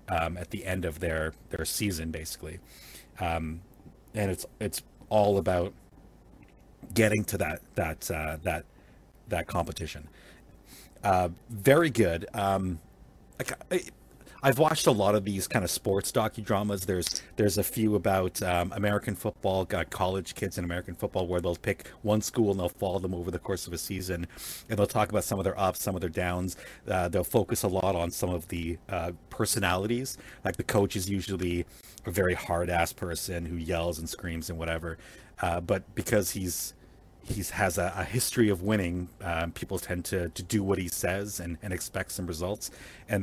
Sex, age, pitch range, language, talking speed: male, 40-59, 85-105 Hz, English, 185 wpm